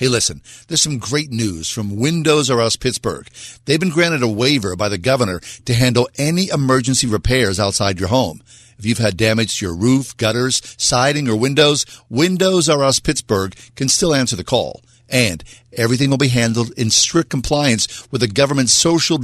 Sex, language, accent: male, English, American